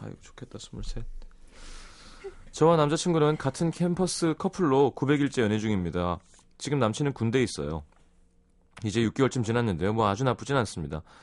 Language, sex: Korean, male